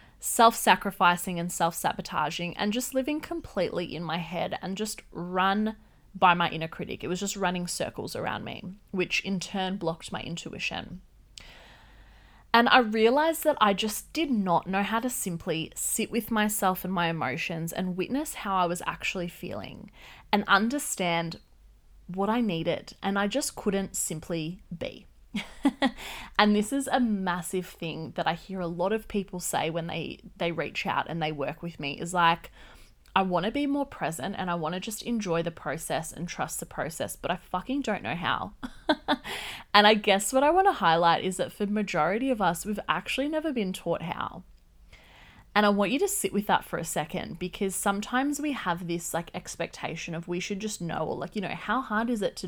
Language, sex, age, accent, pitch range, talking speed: English, female, 20-39, Australian, 170-215 Hz, 195 wpm